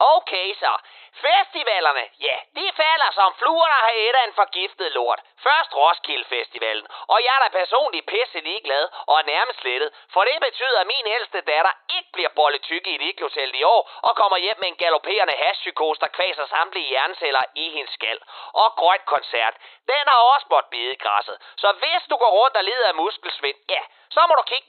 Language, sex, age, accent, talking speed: Danish, male, 30-49, native, 190 wpm